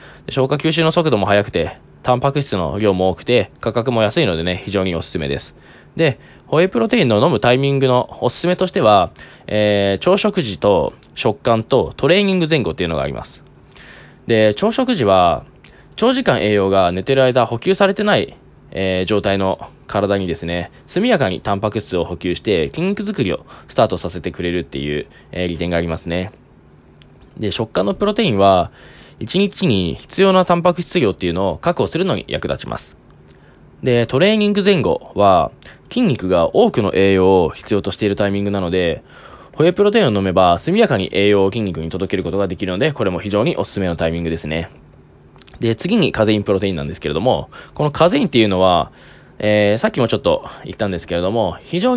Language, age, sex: Japanese, 20-39, male